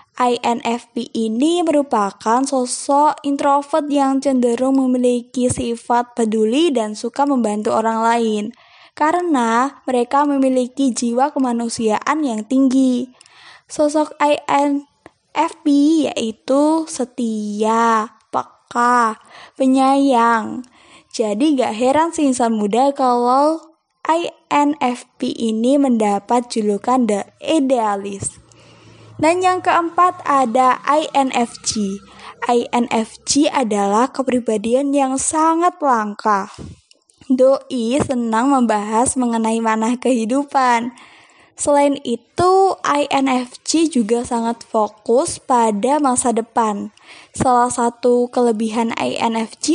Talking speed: 85 wpm